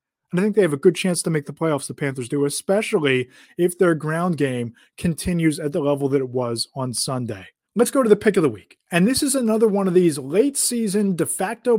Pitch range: 150-210 Hz